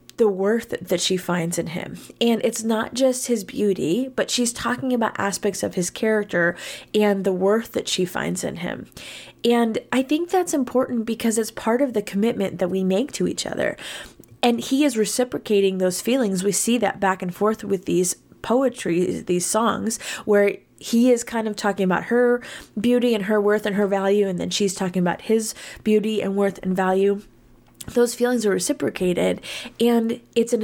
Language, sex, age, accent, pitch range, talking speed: English, female, 20-39, American, 190-235 Hz, 190 wpm